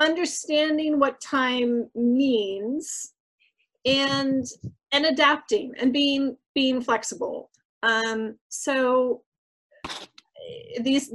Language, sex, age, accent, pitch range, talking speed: English, female, 30-49, American, 220-285 Hz, 75 wpm